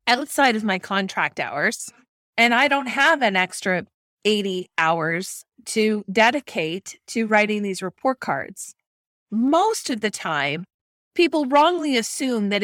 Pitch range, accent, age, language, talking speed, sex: 190-265 Hz, American, 30-49, English, 135 wpm, female